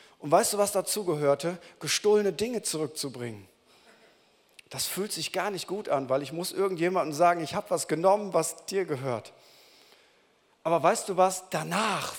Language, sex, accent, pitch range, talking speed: German, male, German, 135-195 Hz, 160 wpm